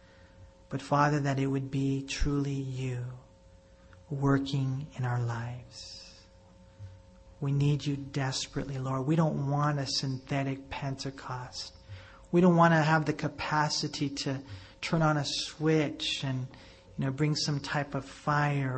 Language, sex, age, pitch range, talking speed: English, male, 40-59, 90-145 Hz, 135 wpm